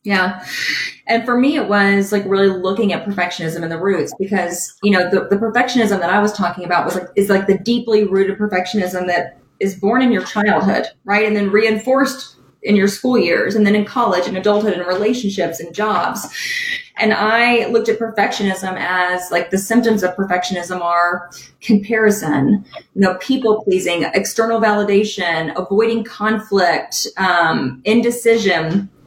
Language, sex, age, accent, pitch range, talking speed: English, female, 20-39, American, 185-225 Hz, 165 wpm